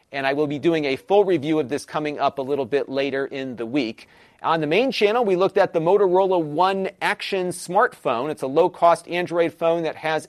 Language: English